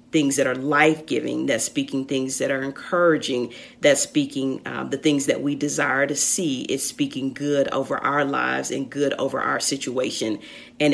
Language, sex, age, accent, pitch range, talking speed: English, female, 40-59, American, 135-155 Hz, 175 wpm